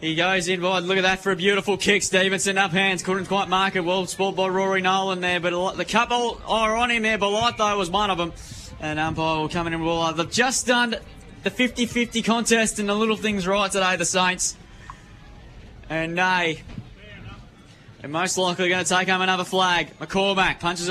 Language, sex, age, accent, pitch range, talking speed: English, male, 10-29, Australian, 180-205 Hz, 210 wpm